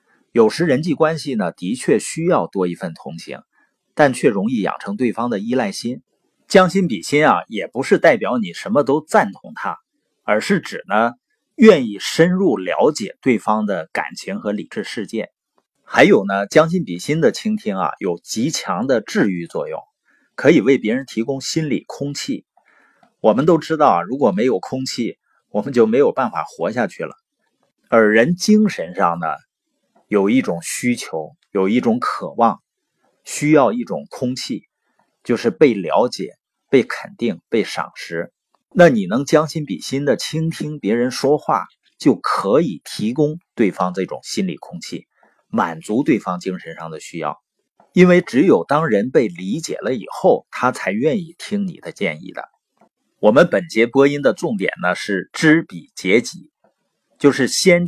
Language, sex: Chinese, male